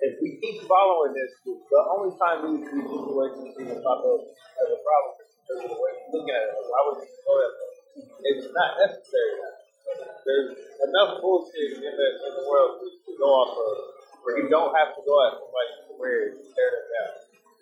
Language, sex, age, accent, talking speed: English, male, 30-49, American, 210 wpm